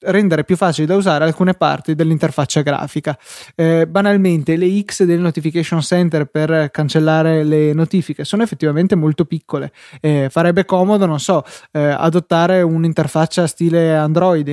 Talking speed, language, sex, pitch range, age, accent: 140 wpm, Italian, male, 150-175 Hz, 20-39, native